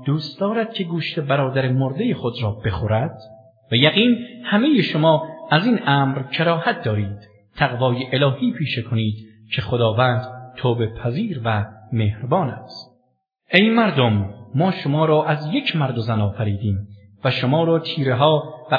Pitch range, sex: 120-175 Hz, male